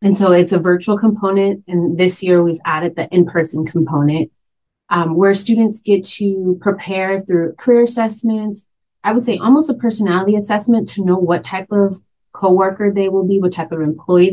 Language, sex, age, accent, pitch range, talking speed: English, female, 30-49, American, 160-195 Hz, 180 wpm